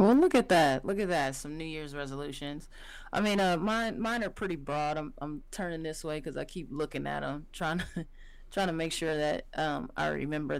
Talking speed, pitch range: 225 wpm, 145-170 Hz